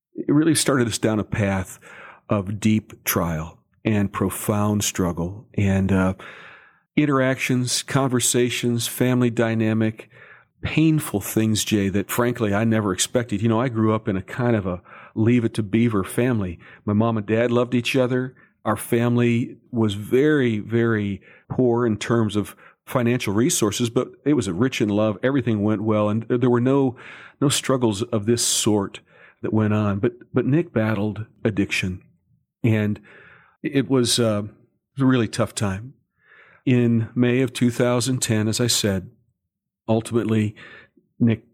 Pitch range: 105-125 Hz